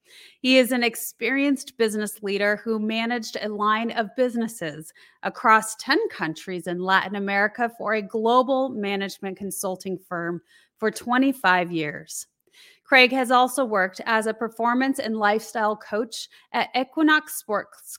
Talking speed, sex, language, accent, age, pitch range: 135 wpm, female, English, American, 30-49, 195-255 Hz